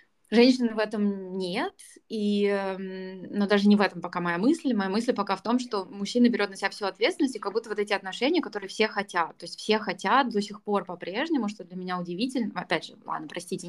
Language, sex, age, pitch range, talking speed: Russian, female, 20-39, 180-225 Hz, 220 wpm